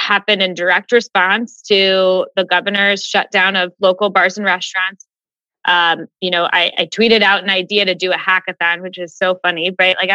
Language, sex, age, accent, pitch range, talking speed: English, female, 20-39, American, 180-215 Hz, 190 wpm